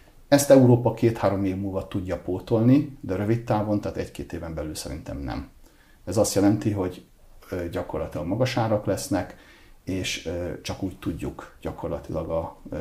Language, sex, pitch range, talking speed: Hungarian, male, 90-120 Hz, 135 wpm